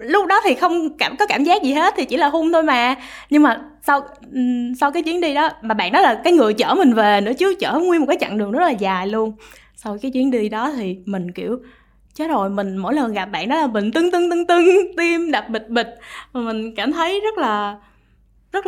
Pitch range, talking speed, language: 210-300 Hz, 255 wpm, Vietnamese